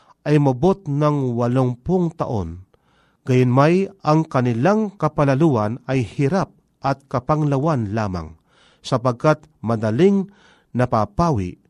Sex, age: male, 40-59